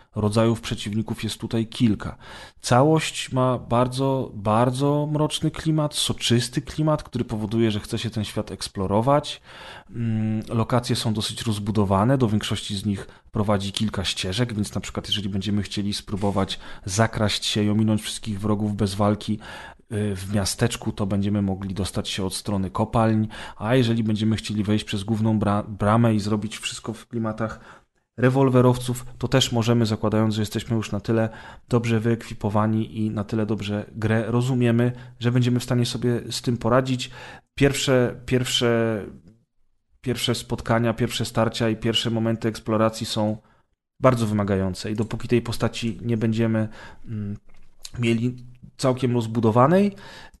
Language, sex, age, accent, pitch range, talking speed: Polish, male, 30-49, native, 105-120 Hz, 140 wpm